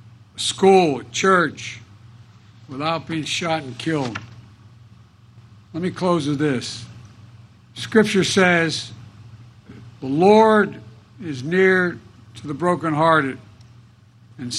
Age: 60-79